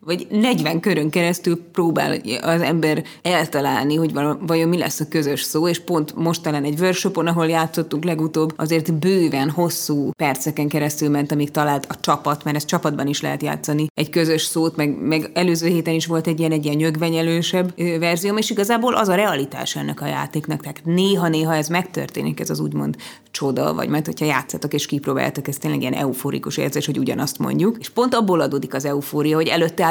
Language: Hungarian